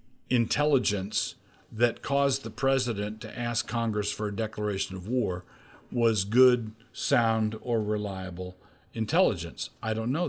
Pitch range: 100-125 Hz